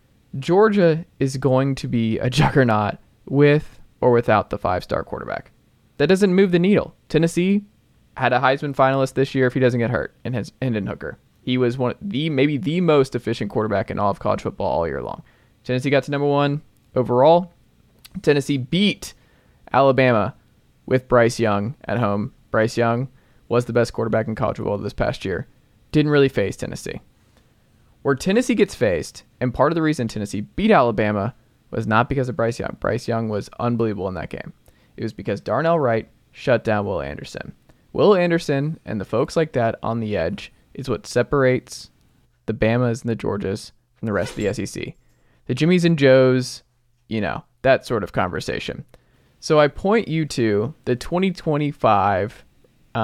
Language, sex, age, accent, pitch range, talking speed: English, male, 20-39, American, 115-145 Hz, 180 wpm